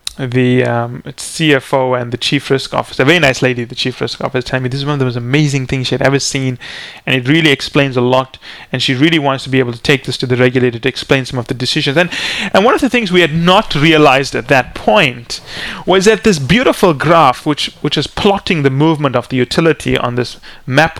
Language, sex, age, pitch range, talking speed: English, male, 30-49, 130-170 Hz, 245 wpm